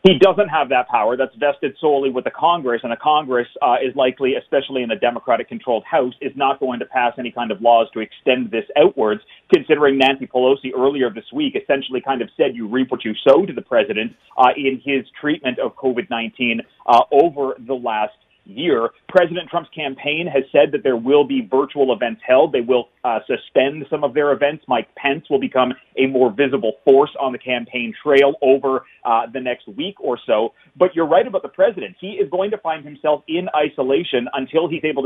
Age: 30-49